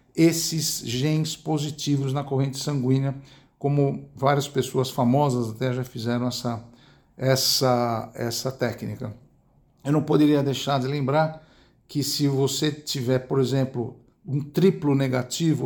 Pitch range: 130-155 Hz